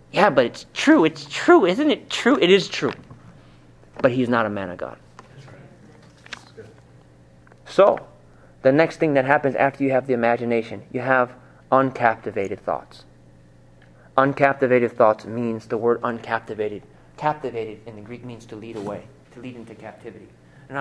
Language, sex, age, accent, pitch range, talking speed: English, male, 30-49, American, 105-135 Hz, 155 wpm